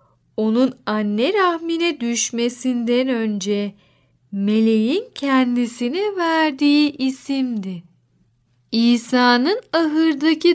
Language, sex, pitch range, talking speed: Turkish, female, 215-290 Hz, 65 wpm